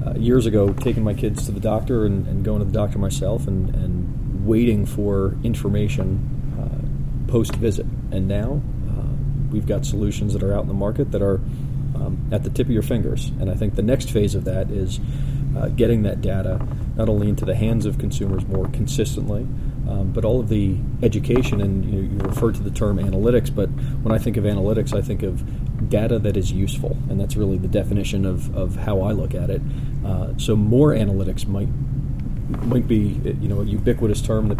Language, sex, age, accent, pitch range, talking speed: English, male, 30-49, American, 100-130 Hz, 205 wpm